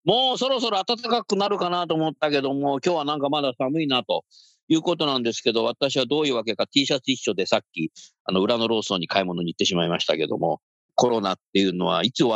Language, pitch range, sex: Japanese, 115-185 Hz, male